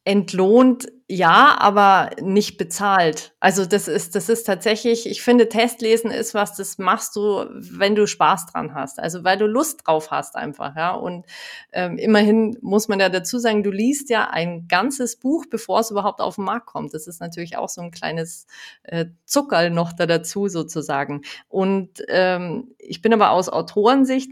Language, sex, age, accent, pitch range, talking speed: German, female, 30-49, German, 180-225 Hz, 180 wpm